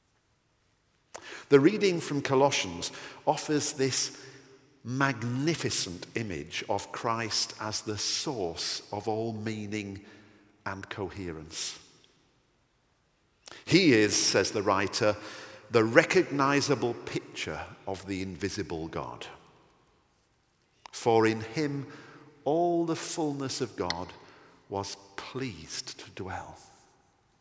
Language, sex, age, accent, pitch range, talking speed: English, male, 50-69, British, 105-140 Hz, 90 wpm